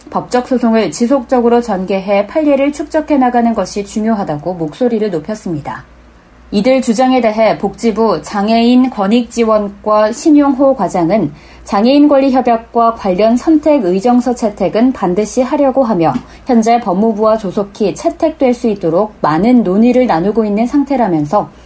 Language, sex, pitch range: Korean, female, 200-255 Hz